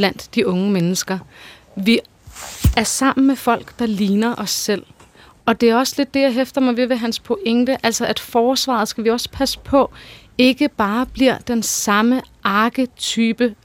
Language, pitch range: Danish, 220-255 Hz